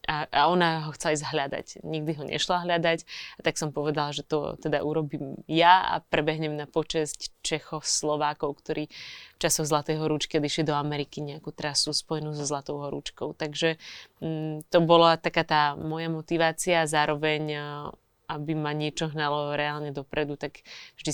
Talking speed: 155 wpm